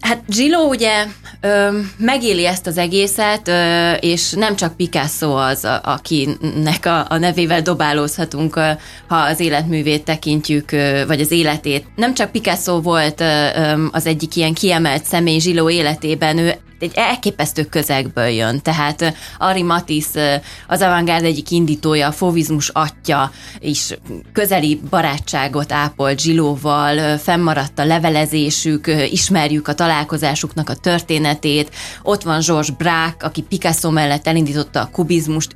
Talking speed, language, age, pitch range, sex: 125 wpm, Hungarian, 20-39, 150-175 Hz, female